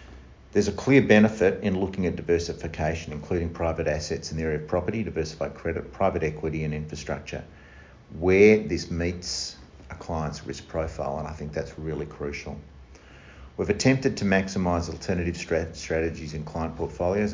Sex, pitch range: male, 75-95 Hz